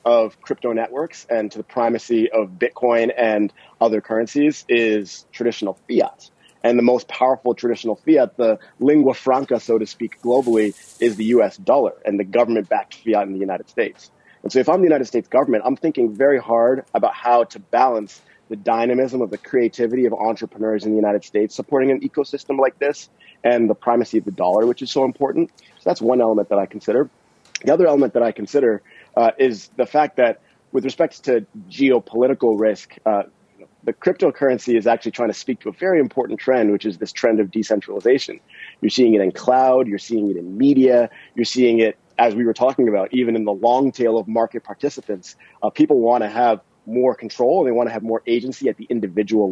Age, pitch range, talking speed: 30-49, 110-130 Hz, 200 wpm